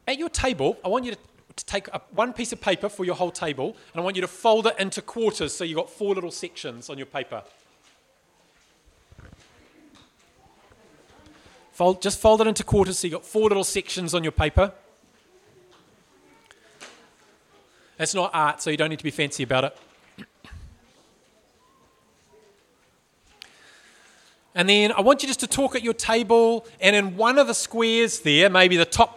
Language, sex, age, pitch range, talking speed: English, male, 30-49, 180-225 Hz, 170 wpm